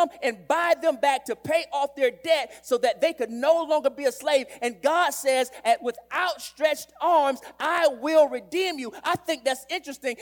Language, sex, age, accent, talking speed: English, male, 30-49, American, 190 wpm